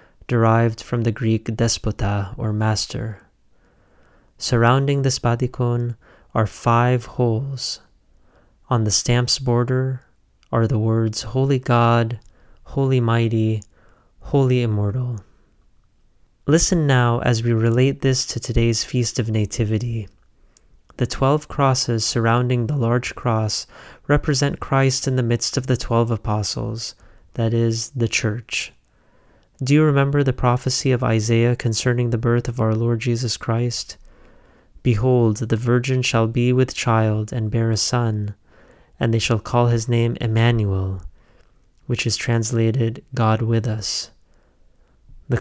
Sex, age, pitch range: male, 30-49, 110-125 Hz